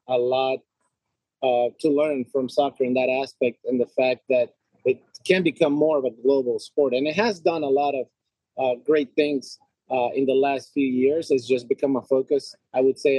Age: 30-49